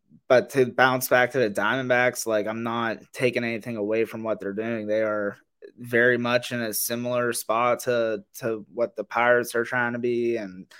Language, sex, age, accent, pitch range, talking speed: English, male, 20-39, American, 105-120 Hz, 195 wpm